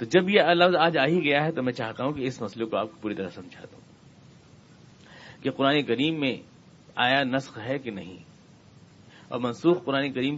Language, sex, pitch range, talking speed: Urdu, male, 120-170 Hz, 210 wpm